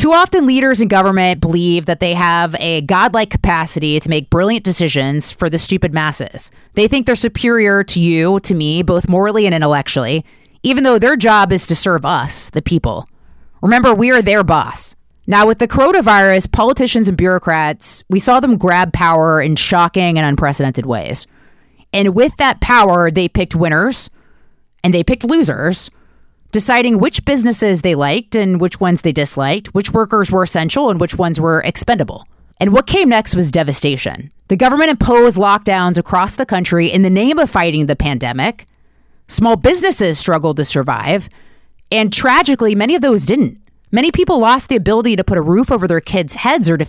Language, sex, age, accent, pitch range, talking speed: English, female, 30-49, American, 165-235 Hz, 180 wpm